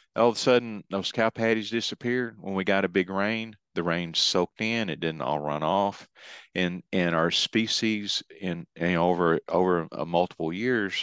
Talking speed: 185 wpm